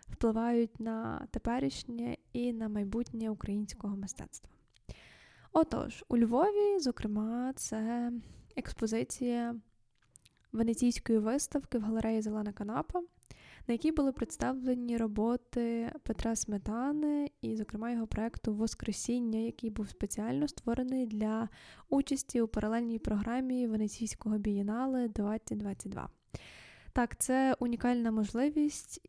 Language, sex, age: Ukrainian, female, 10-29